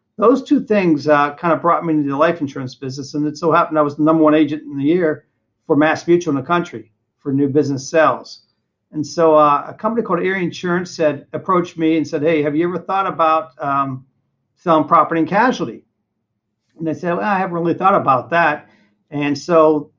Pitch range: 145-170 Hz